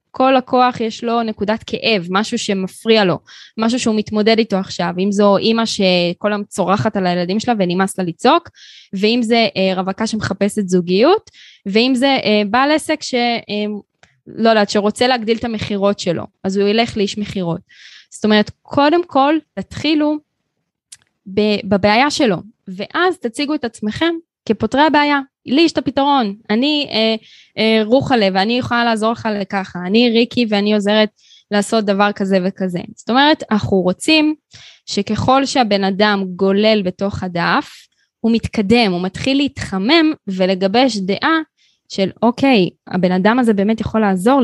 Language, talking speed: Hebrew, 145 wpm